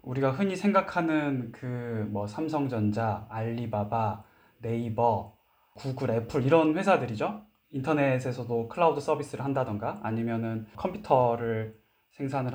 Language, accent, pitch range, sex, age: Korean, native, 115-155 Hz, male, 20-39